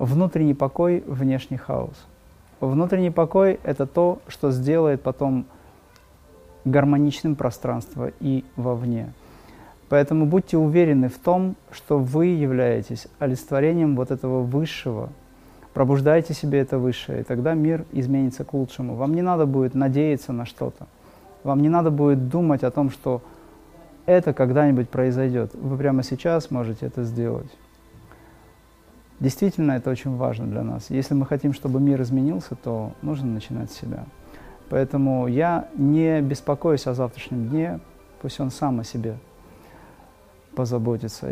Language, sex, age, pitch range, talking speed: Russian, male, 20-39, 125-145 Hz, 130 wpm